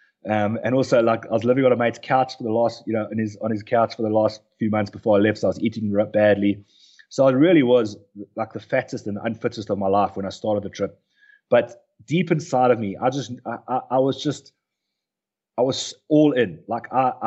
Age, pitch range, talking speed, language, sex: 30-49, 105-130 Hz, 245 wpm, English, male